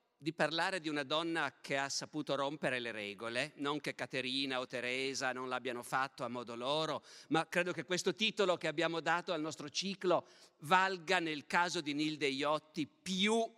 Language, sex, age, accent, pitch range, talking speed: Italian, male, 50-69, native, 135-170 Hz, 175 wpm